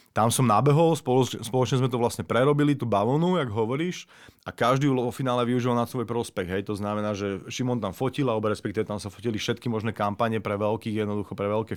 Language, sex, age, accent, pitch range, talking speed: Czech, male, 30-49, native, 105-125 Hz, 205 wpm